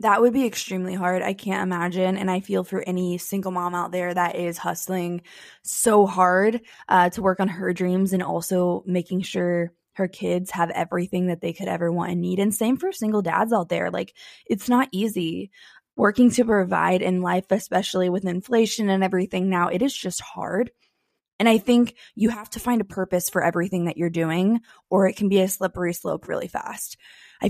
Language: English